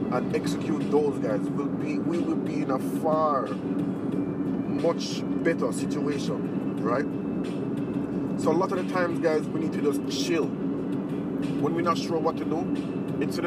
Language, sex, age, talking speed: English, male, 30-49, 150 wpm